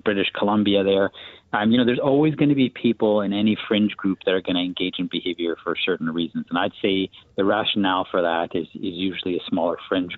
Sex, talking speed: male, 230 wpm